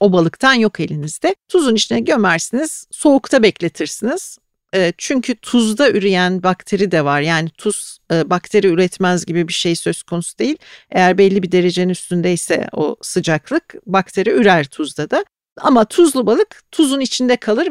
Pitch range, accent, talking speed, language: 180-270 Hz, native, 140 wpm, Turkish